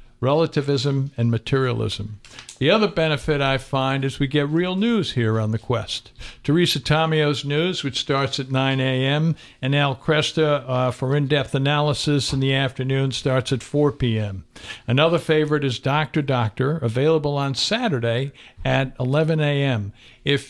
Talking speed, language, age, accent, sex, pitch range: 150 wpm, English, 60-79, American, male, 120-145 Hz